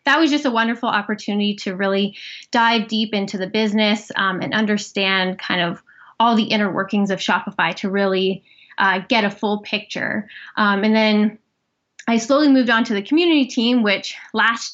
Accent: American